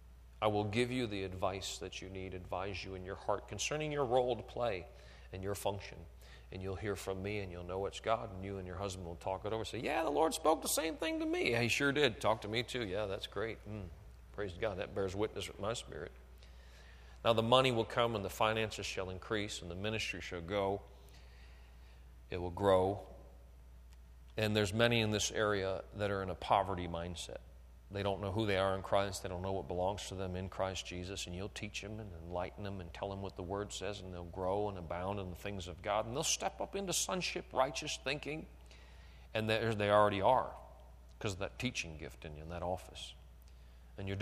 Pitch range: 80-105 Hz